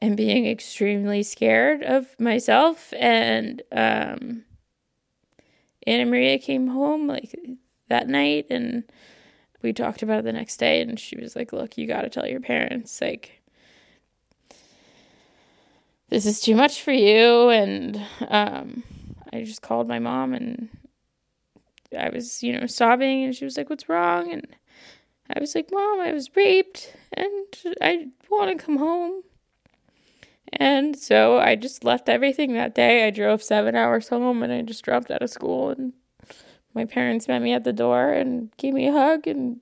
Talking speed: 160 wpm